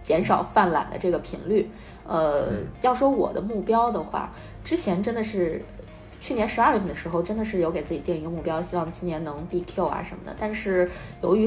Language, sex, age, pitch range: Chinese, female, 20-39, 175-215 Hz